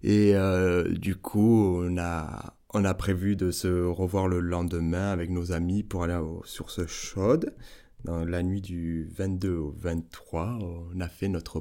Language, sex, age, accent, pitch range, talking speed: French, male, 20-39, French, 90-105 Hz, 175 wpm